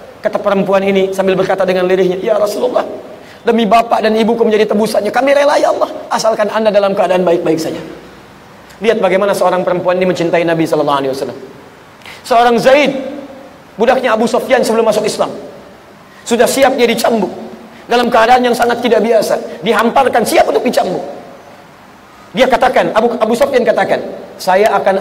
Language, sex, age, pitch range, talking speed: Indonesian, male, 30-49, 190-240 Hz, 155 wpm